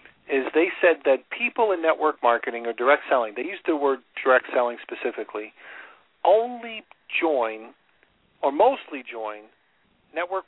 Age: 40-59